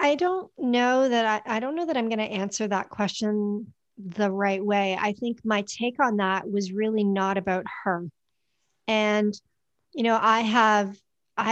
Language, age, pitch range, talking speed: English, 50-69, 195-225 Hz, 170 wpm